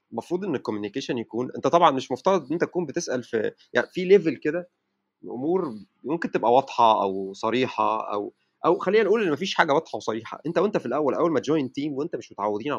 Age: 30-49